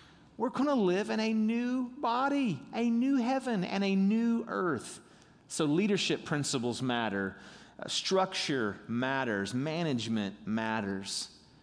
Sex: male